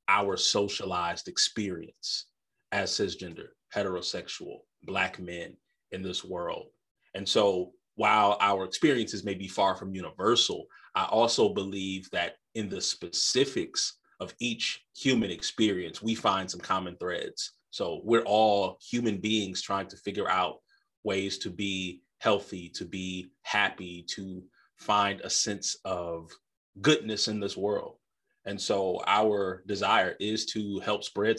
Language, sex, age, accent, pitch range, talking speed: English, male, 30-49, American, 95-110 Hz, 135 wpm